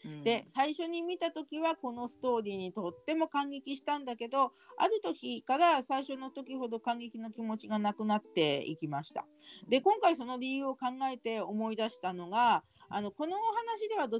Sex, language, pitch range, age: female, Japanese, 190-300 Hz, 40-59